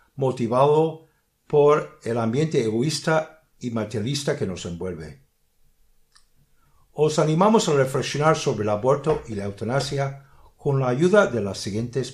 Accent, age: Spanish, 60-79